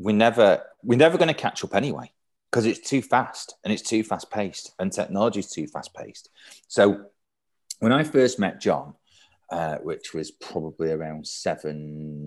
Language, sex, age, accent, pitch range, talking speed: English, male, 30-49, British, 80-115 Hz, 170 wpm